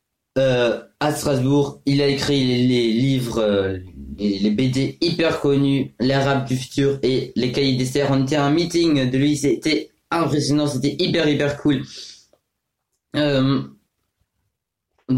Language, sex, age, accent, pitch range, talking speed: French, male, 20-39, French, 110-145 Hz, 150 wpm